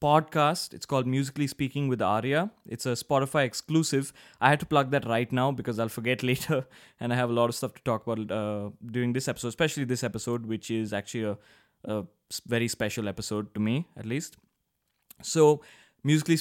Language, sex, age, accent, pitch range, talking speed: English, male, 20-39, Indian, 115-140 Hz, 195 wpm